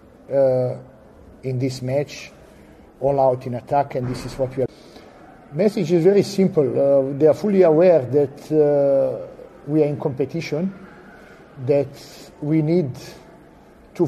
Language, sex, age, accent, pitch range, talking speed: English, male, 50-69, Italian, 135-170 Hz, 140 wpm